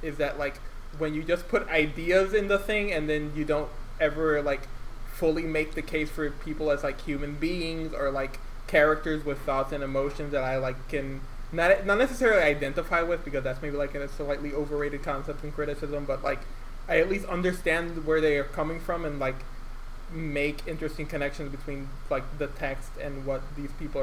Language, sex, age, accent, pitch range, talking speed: English, male, 20-39, American, 135-155 Hz, 195 wpm